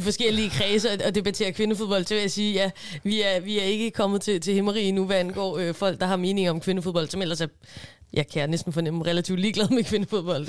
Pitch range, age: 185-220 Hz, 20-39